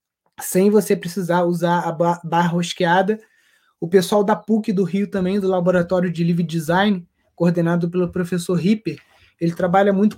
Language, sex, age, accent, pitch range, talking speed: Portuguese, male, 20-39, Brazilian, 175-215 Hz, 155 wpm